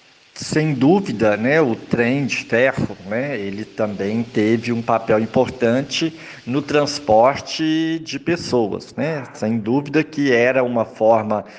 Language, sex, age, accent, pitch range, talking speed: Portuguese, male, 50-69, Brazilian, 110-145 Hz, 130 wpm